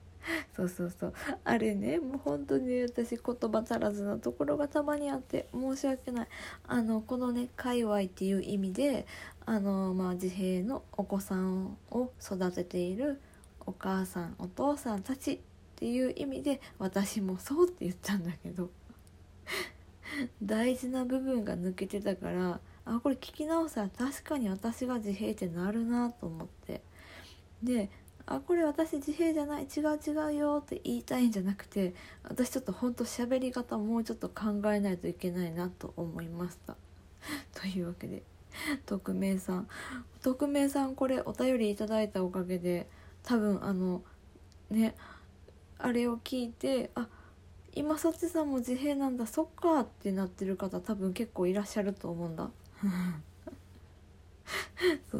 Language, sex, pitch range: Japanese, female, 185-260 Hz